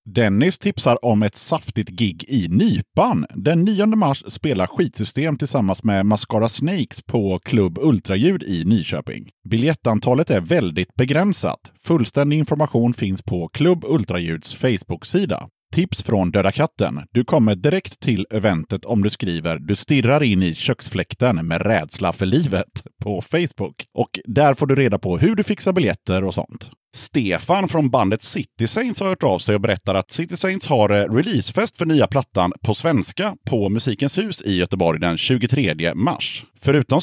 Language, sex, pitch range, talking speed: Swedish, male, 100-150 Hz, 160 wpm